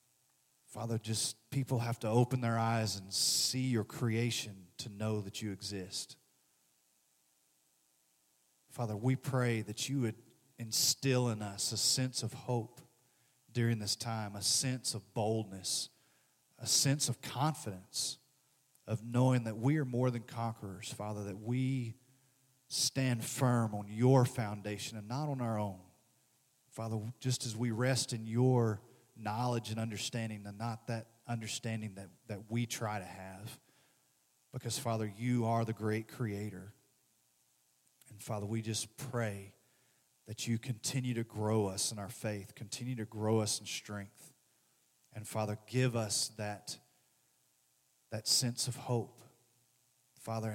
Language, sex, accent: English, male, American